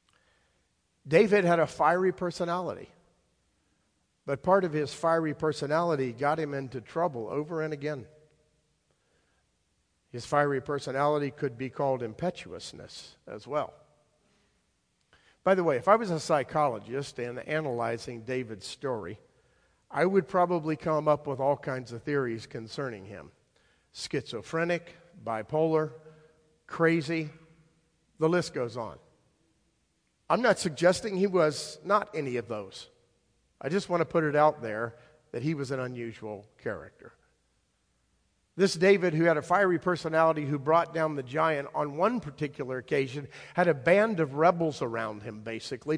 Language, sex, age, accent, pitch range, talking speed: English, male, 50-69, American, 130-165 Hz, 135 wpm